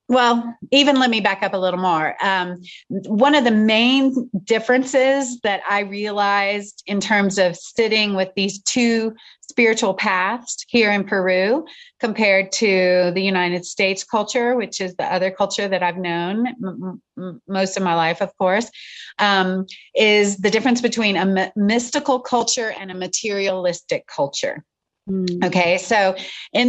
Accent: American